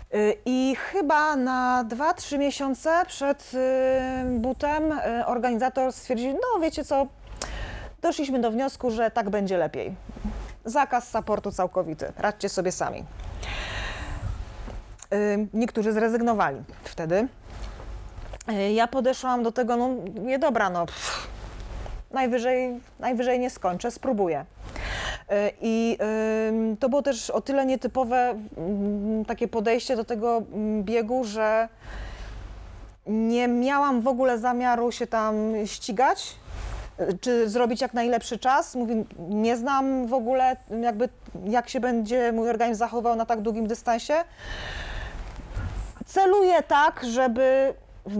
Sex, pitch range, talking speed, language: female, 200-255 Hz, 110 wpm, Polish